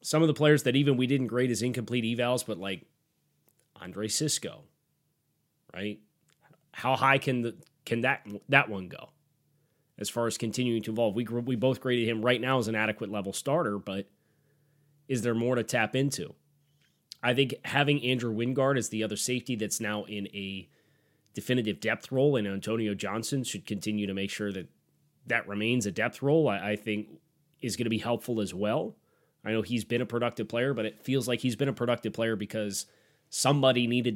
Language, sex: English, male